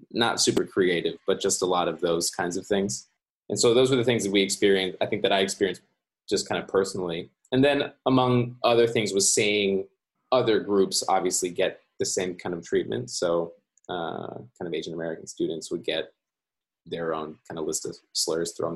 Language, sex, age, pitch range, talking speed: English, male, 20-39, 90-115 Hz, 200 wpm